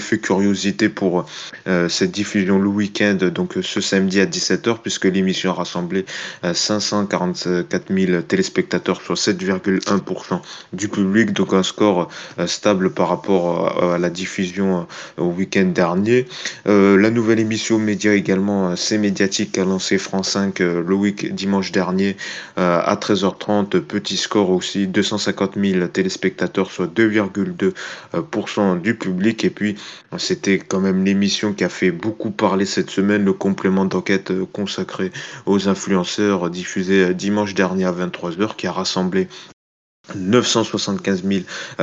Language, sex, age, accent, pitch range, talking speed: French, male, 20-39, French, 95-105 Hz, 140 wpm